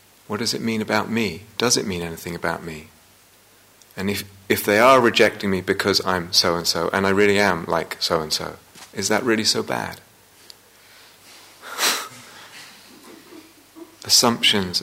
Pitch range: 95-120 Hz